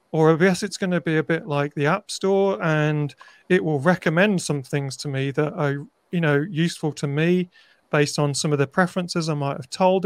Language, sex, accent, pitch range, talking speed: English, male, British, 145-175 Hz, 220 wpm